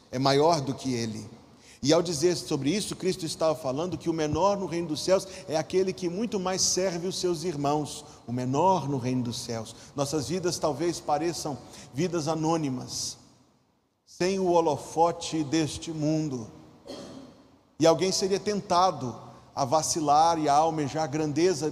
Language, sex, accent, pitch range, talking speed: Portuguese, male, Brazilian, 125-165 Hz, 155 wpm